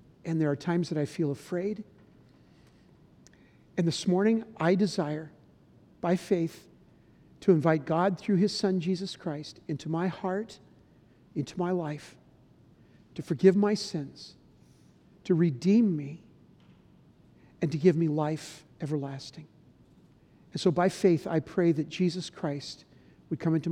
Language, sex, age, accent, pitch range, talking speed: English, male, 50-69, American, 150-180 Hz, 135 wpm